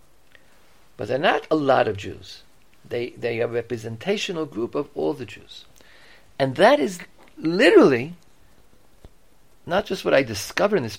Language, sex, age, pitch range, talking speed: English, male, 50-69, 110-165 Hz, 155 wpm